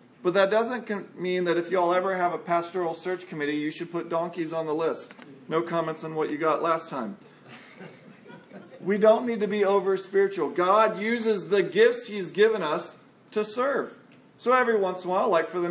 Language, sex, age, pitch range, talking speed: English, male, 40-59, 175-225 Hz, 205 wpm